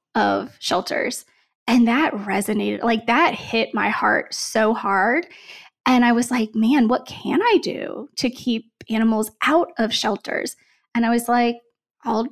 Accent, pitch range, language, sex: American, 230-290 Hz, English, female